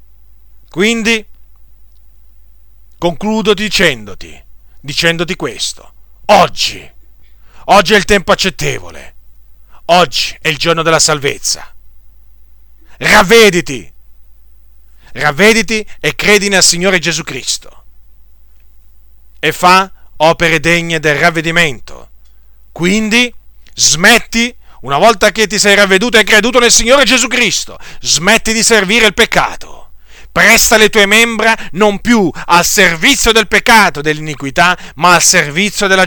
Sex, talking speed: male, 110 wpm